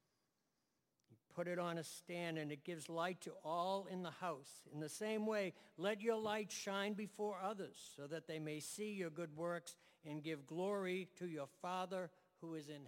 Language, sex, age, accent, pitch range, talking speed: English, male, 60-79, American, 150-185 Hz, 190 wpm